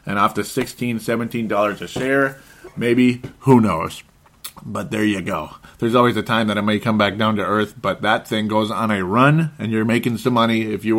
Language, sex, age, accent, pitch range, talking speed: English, male, 30-49, American, 105-145 Hz, 225 wpm